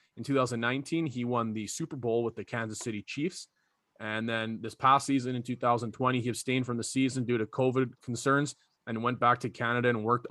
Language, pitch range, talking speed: English, 110-130 Hz, 205 wpm